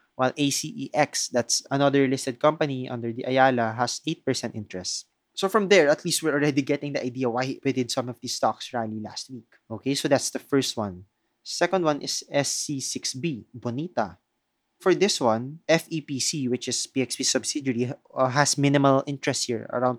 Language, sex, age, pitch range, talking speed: English, male, 20-39, 120-140 Hz, 170 wpm